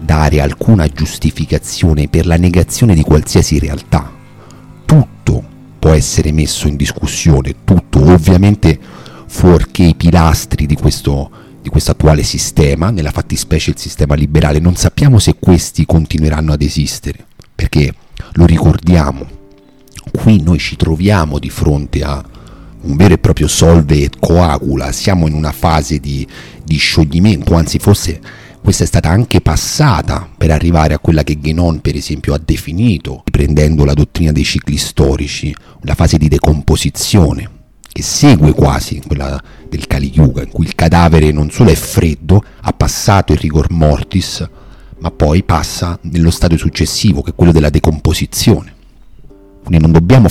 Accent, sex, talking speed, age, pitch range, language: native, male, 145 wpm, 40-59, 75-90 Hz, Italian